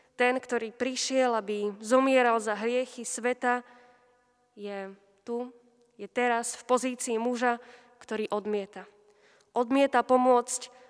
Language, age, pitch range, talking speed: Slovak, 20-39, 225-255 Hz, 105 wpm